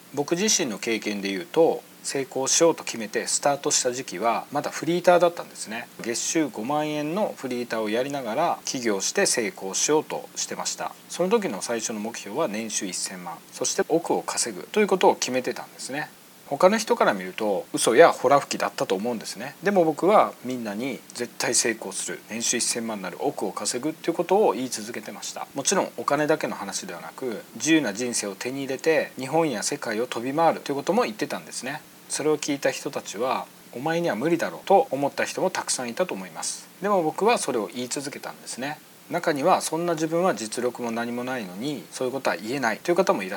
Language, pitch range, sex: Japanese, 120-175 Hz, male